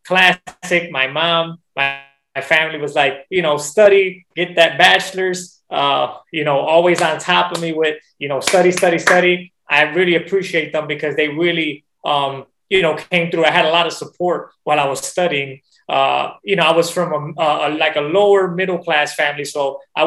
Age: 20-39